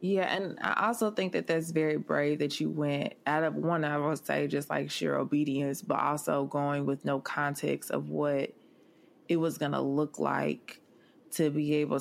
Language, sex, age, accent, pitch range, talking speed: English, female, 20-39, American, 145-160 Hz, 195 wpm